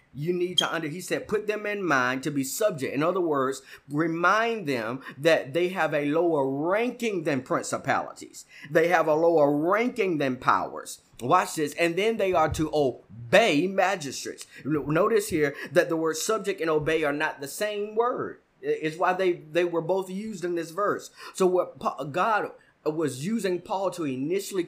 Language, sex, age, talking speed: English, male, 30-49, 175 wpm